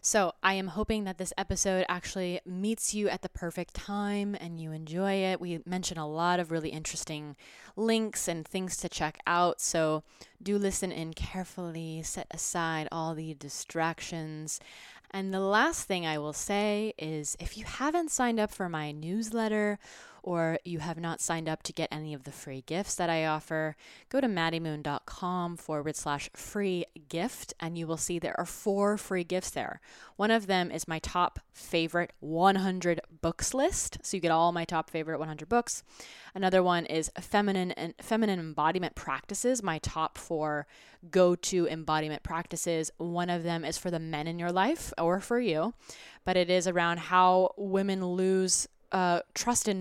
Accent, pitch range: American, 165-200 Hz